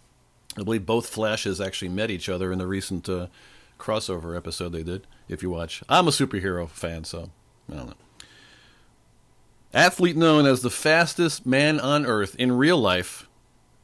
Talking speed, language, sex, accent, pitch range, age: 165 wpm, English, male, American, 90-140 Hz, 40-59